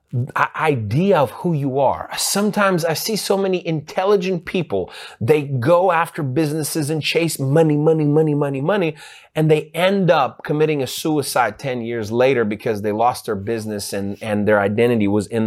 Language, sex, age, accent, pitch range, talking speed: English, male, 30-49, American, 135-195 Hz, 170 wpm